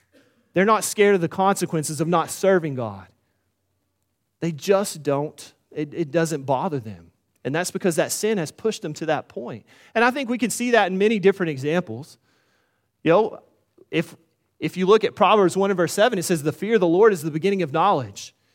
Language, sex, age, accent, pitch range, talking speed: English, male, 30-49, American, 135-220 Hz, 205 wpm